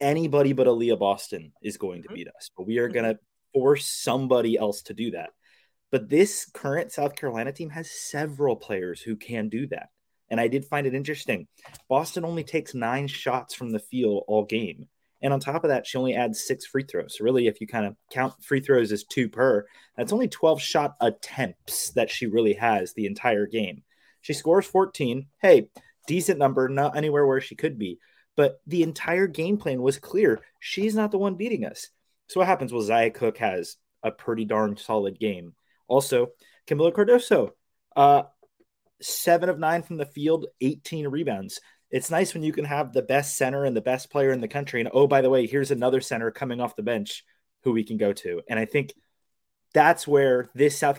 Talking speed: 205 wpm